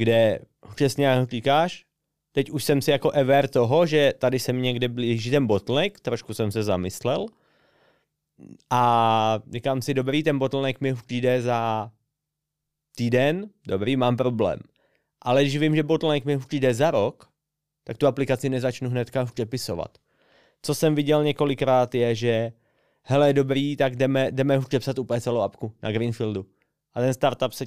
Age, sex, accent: 30-49, male, native